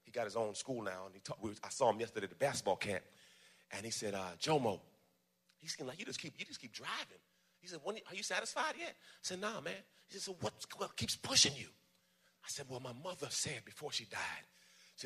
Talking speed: 245 wpm